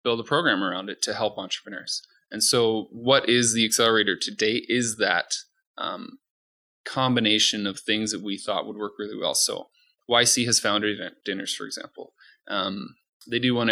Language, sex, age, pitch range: English, male, 20-39, 110-140 Hz